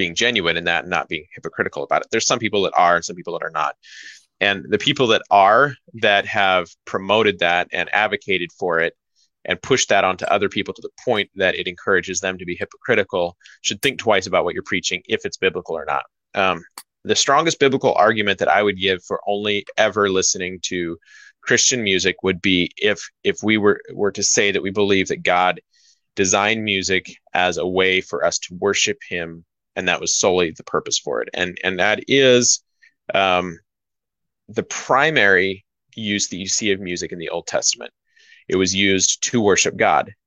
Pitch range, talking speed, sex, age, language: 90-110 Hz, 200 wpm, male, 20-39, English